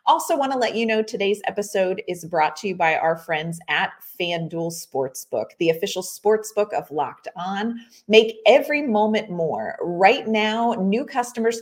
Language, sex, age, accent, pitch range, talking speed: English, female, 30-49, American, 170-230 Hz, 165 wpm